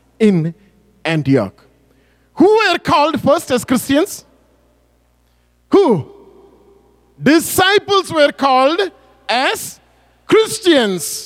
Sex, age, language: male, 50-69, English